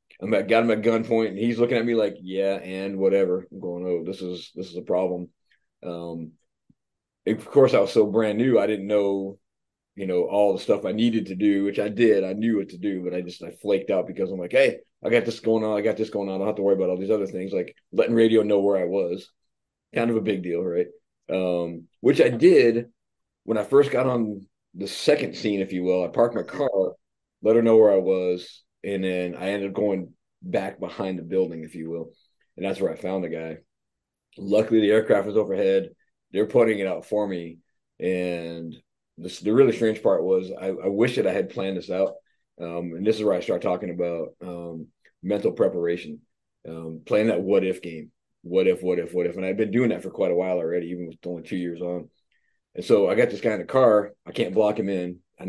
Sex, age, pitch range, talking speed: male, 30-49, 90-110 Hz, 240 wpm